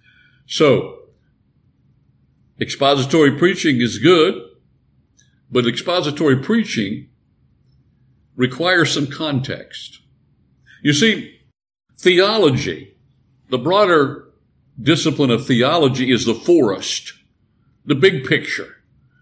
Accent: American